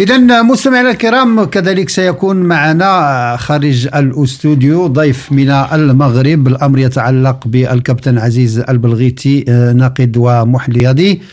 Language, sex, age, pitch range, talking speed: French, male, 50-69, 130-165 Hz, 95 wpm